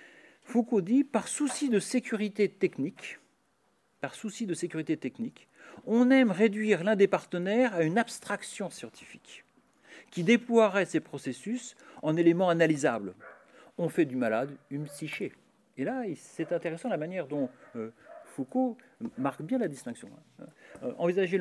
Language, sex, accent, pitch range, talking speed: French, male, French, 150-235 Hz, 135 wpm